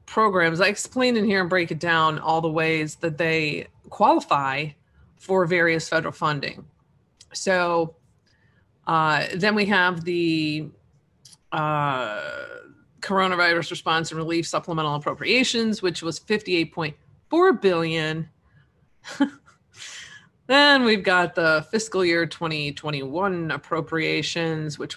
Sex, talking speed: female, 120 wpm